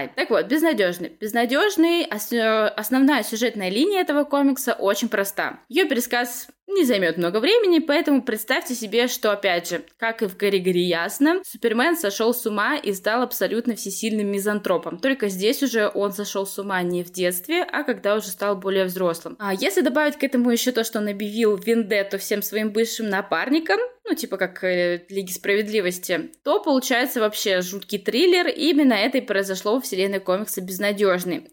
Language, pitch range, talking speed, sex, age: Russian, 195-260 Hz, 165 wpm, female, 20-39